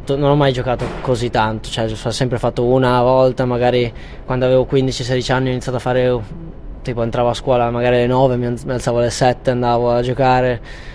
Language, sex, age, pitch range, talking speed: Italian, male, 20-39, 110-130 Hz, 190 wpm